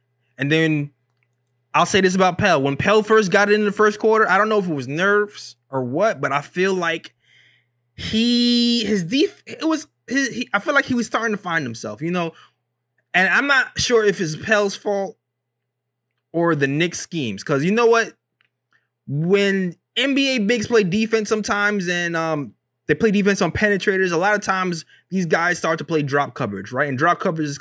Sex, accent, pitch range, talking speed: male, American, 135-200 Hz, 200 wpm